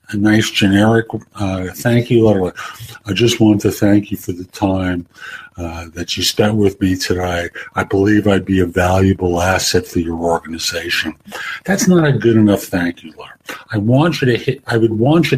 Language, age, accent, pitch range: English, 60-79, American, 100-130 Hz